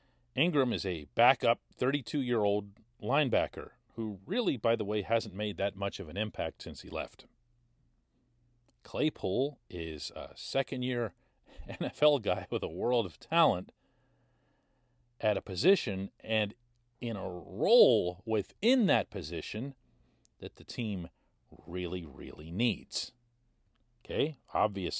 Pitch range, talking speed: 110-170 Hz, 120 wpm